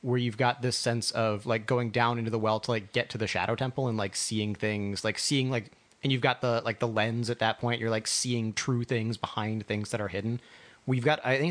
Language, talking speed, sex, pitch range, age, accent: English, 260 wpm, male, 110-130 Hz, 30-49, American